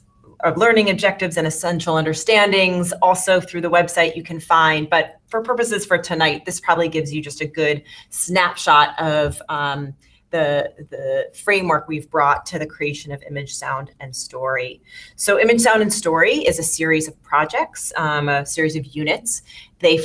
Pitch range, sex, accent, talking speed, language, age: 155-180 Hz, female, American, 170 wpm, English, 30-49